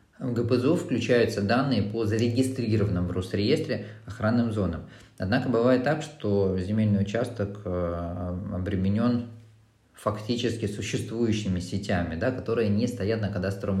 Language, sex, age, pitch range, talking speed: Russian, male, 20-39, 95-115 Hz, 110 wpm